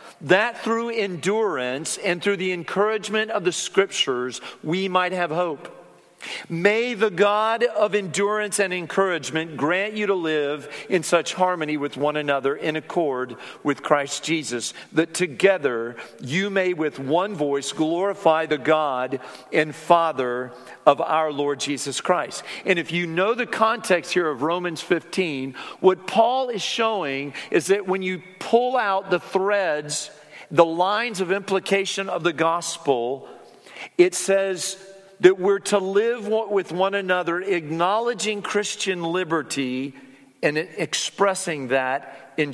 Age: 50-69